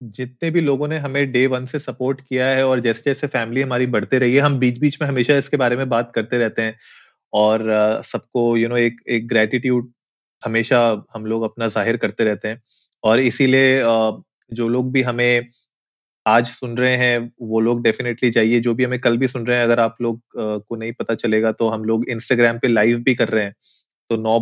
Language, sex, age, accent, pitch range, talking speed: Hindi, male, 30-49, native, 115-135 Hz, 210 wpm